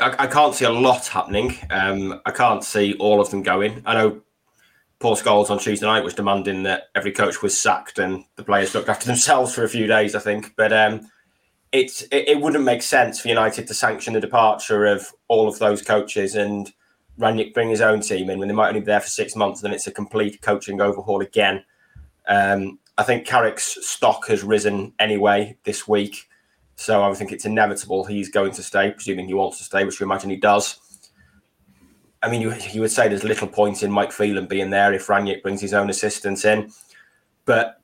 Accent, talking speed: British, 210 wpm